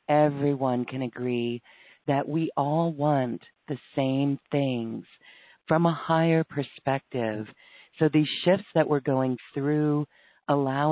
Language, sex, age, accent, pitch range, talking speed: English, female, 40-59, American, 130-155 Hz, 120 wpm